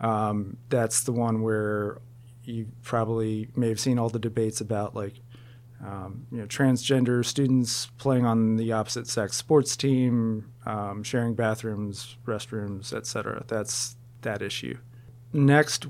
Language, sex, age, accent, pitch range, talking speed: English, male, 30-49, American, 115-125 Hz, 140 wpm